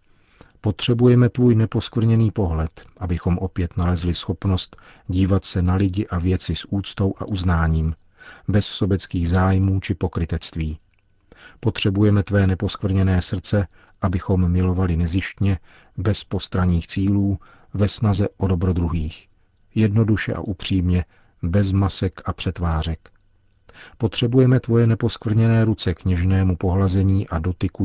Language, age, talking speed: Czech, 40-59, 115 wpm